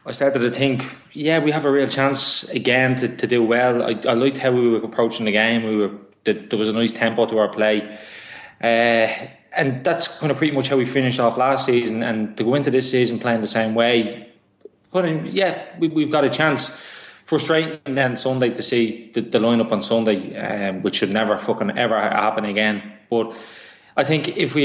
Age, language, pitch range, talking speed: 20-39, English, 110-135 Hz, 215 wpm